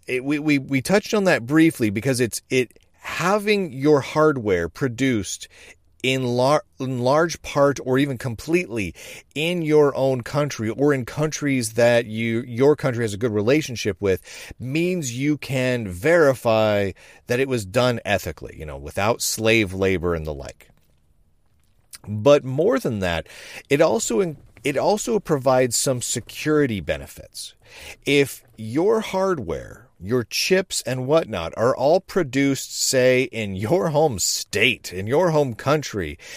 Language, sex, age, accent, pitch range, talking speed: English, male, 40-59, American, 110-150 Hz, 145 wpm